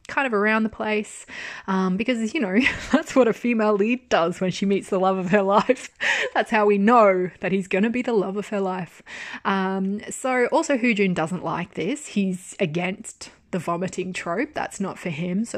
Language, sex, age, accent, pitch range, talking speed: English, female, 20-39, Australian, 180-220 Hz, 210 wpm